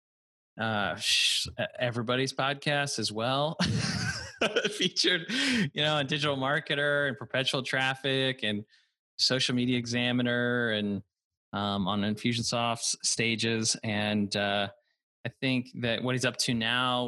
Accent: American